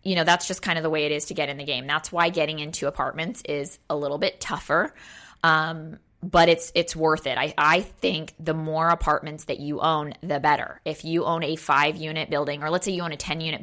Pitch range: 150-185 Hz